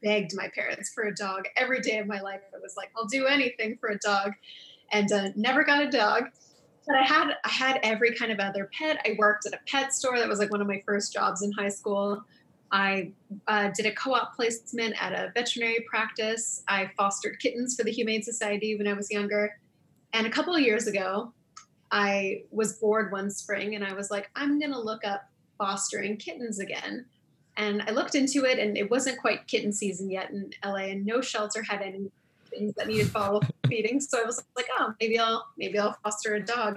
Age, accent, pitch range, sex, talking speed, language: 20-39, American, 205-245 Hz, female, 220 wpm, English